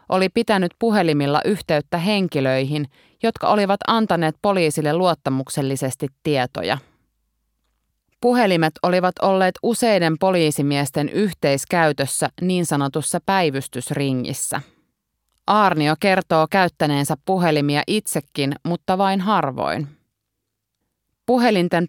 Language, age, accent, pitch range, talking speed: Finnish, 30-49, native, 140-190 Hz, 80 wpm